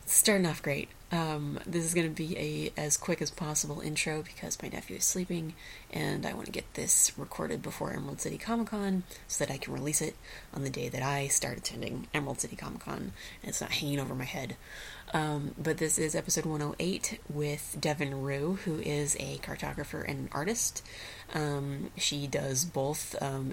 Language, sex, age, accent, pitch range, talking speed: English, female, 30-49, American, 140-165 Hz, 195 wpm